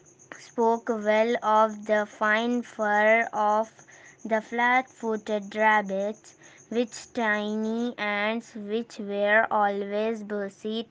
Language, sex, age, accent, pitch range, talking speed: Telugu, female, 20-39, native, 205-225 Hz, 95 wpm